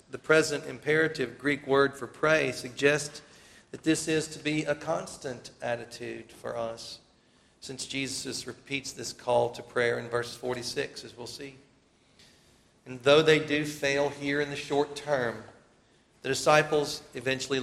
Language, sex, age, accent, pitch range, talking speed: English, male, 40-59, American, 125-150 Hz, 150 wpm